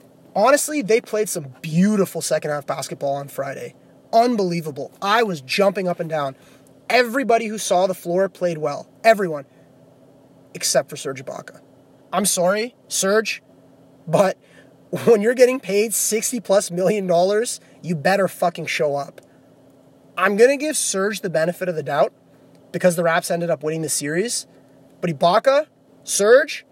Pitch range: 160-230 Hz